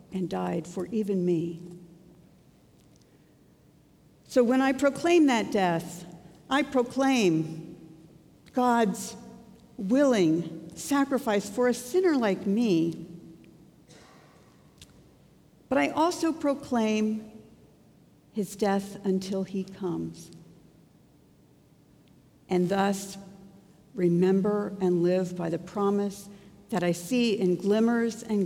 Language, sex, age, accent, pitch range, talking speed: English, female, 60-79, American, 170-220 Hz, 95 wpm